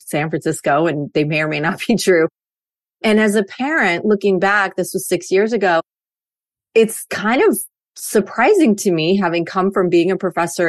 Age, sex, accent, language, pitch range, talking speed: 30-49, female, American, English, 170-230 Hz, 185 wpm